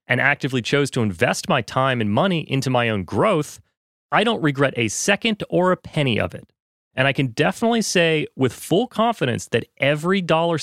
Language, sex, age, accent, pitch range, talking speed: English, male, 30-49, American, 125-175 Hz, 190 wpm